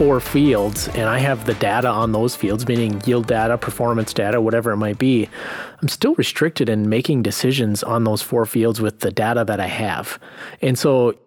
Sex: male